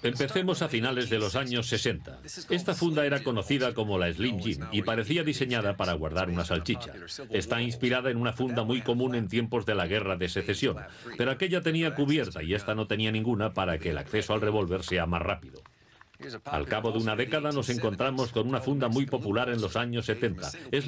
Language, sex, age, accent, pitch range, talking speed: Spanish, male, 40-59, Spanish, 105-135 Hz, 205 wpm